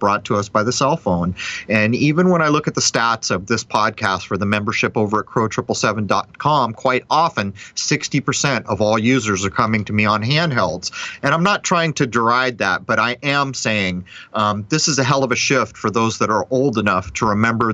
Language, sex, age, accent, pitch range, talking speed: English, male, 30-49, American, 110-135 Hz, 215 wpm